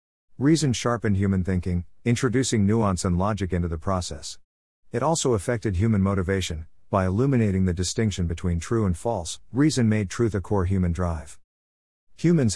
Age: 50-69